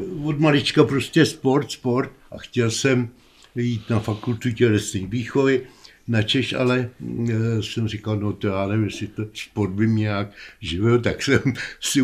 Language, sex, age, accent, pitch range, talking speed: Czech, male, 60-79, native, 100-115 Hz, 145 wpm